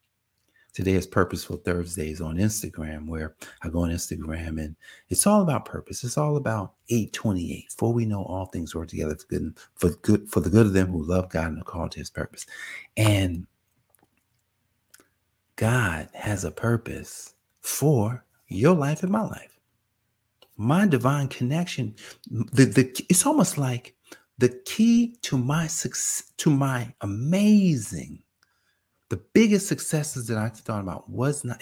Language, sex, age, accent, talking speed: English, male, 50-69, American, 155 wpm